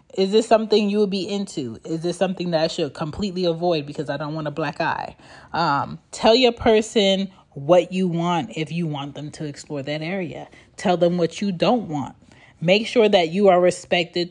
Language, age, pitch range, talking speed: English, 30-49, 150-205 Hz, 205 wpm